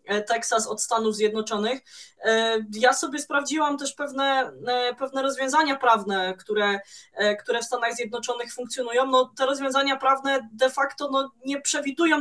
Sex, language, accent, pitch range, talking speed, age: female, Polish, native, 210-255 Hz, 125 wpm, 20-39